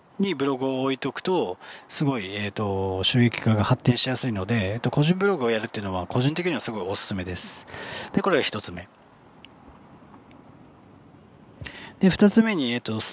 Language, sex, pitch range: Japanese, male, 110-170 Hz